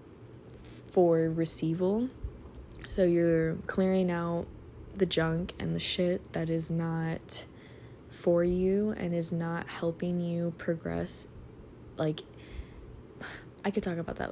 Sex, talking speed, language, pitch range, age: female, 115 wpm, English, 165-185 Hz, 20-39